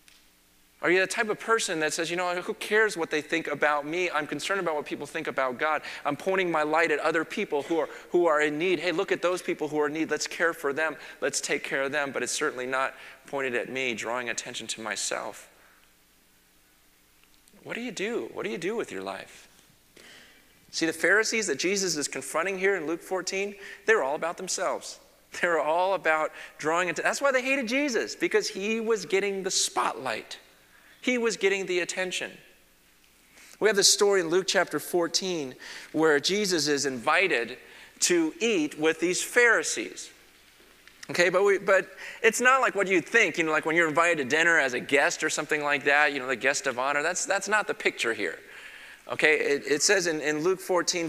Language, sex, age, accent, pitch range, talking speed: English, male, 30-49, American, 150-195 Hz, 205 wpm